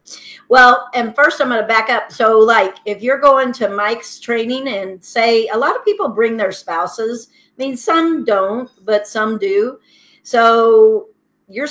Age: 50-69